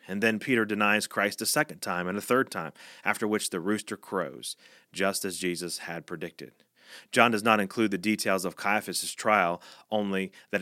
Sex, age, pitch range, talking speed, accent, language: male, 30-49, 95-110 Hz, 185 wpm, American, English